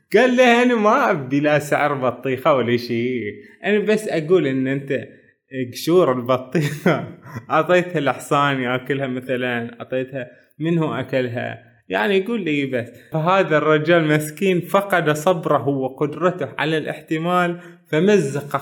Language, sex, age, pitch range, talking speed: Arabic, male, 20-39, 130-180 Hz, 120 wpm